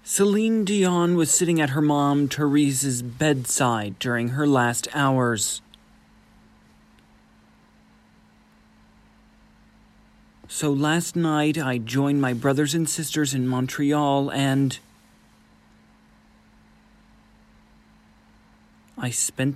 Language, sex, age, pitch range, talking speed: English, male, 40-59, 125-165 Hz, 85 wpm